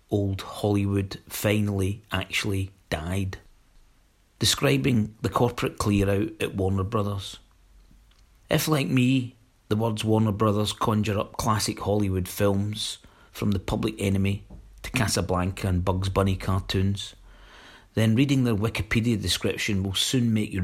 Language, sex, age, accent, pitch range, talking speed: English, male, 40-59, British, 95-110 Hz, 130 wpm